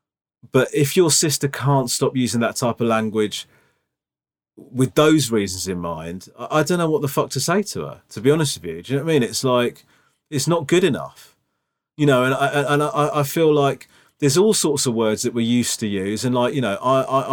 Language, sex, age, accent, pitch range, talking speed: English, male, 30-49, British, 120-145 Hz, 230 wpm